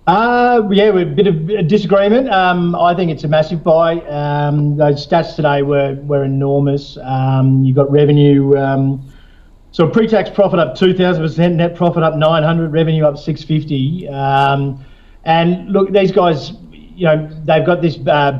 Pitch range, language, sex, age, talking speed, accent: 140-165 Hz, English, male, 40-59, 180 wpm, Australian